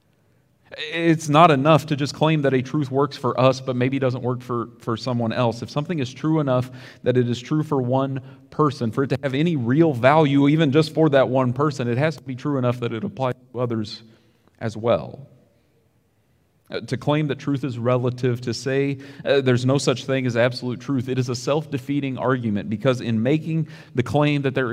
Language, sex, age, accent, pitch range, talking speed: English, male, 40-59, American, 120-140 Hz, 210 wpm